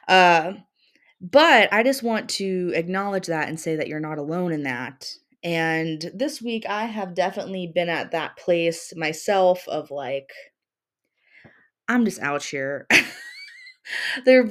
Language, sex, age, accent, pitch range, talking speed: English, female, 20-39, American, 165-210 Hz, 140 wpm